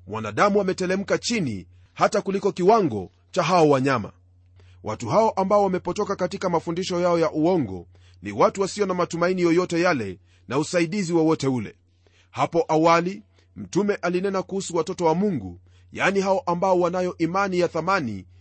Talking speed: 145 wpm